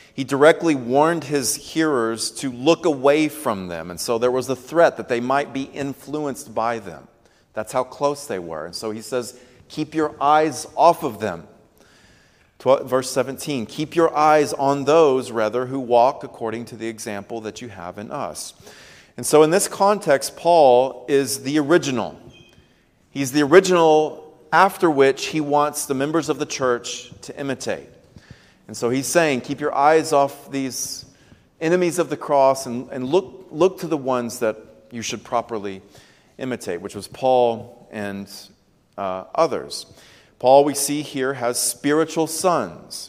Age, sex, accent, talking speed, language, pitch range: 40-59, male, American, 165 wpm, English, 120-150 Hz